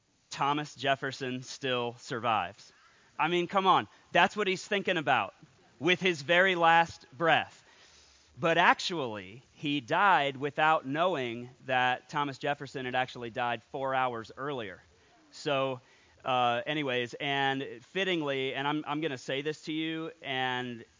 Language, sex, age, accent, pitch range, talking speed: English, male, 30-49, American, 120-150 Hz, 135 wpm